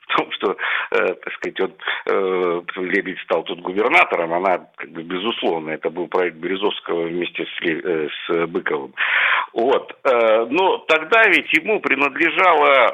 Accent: native